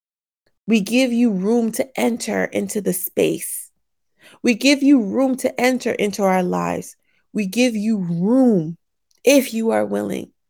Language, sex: English, female